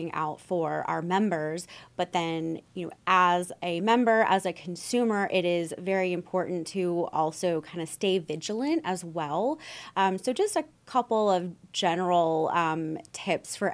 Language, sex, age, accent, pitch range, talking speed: English, female, 20-39, American, 170-215 Hz, 155 wpm